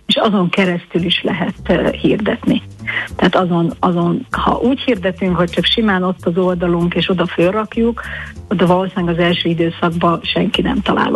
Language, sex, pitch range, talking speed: Hungarian, female, 175-190 Hz, 155 wpm